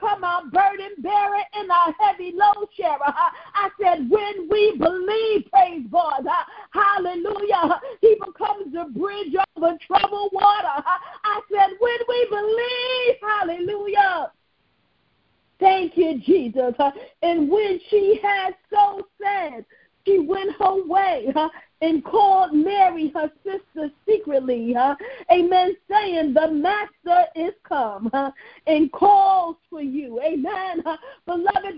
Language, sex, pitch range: English, female, 335-405 Hz